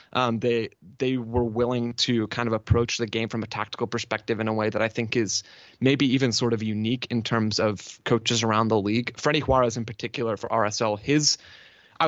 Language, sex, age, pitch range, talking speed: English, male, 20-39, 110-125 Hz, 210 wpm